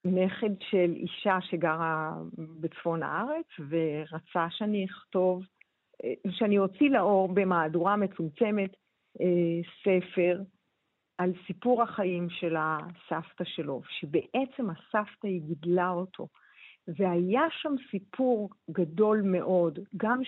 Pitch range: 175-230 Hz